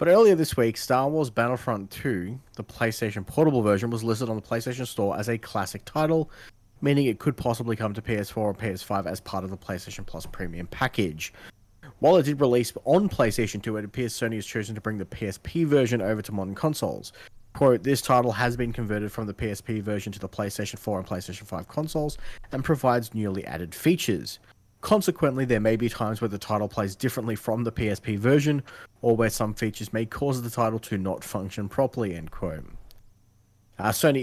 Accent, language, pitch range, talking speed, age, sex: Australian, English, 105-125 Hz, 195 wpm, 30-49, male